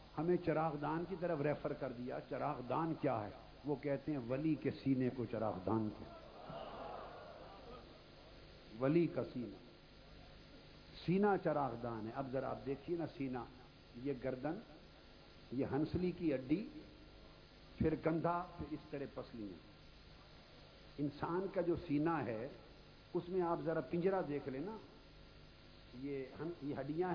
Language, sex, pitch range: Urdu, male, 130-165 Hz